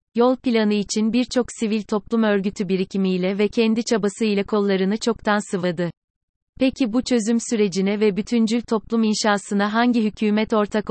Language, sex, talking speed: Turkish, female, 140 wpm